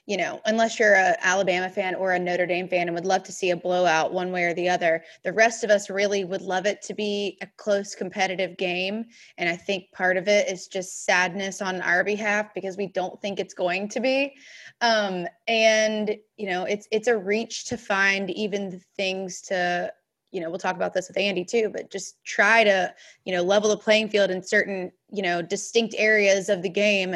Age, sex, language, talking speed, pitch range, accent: 20-39, female, English, 220 wpm, 185-215 Hz, American